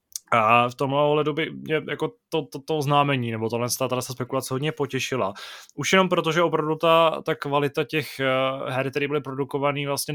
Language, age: Czech, 20-39